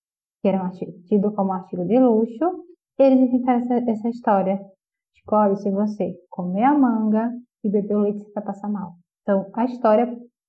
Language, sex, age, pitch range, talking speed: Portuguese, female, 10-29, 205-260 Hz, 185 wpm